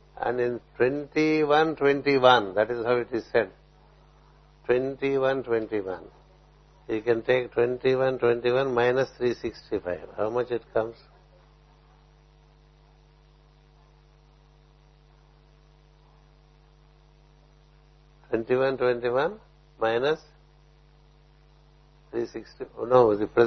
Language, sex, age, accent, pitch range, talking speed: English, male, 60-79, Indian, 120-150 Hz, 60 wpm